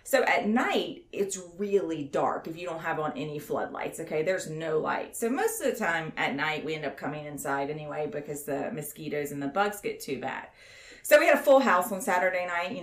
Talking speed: 230 wpm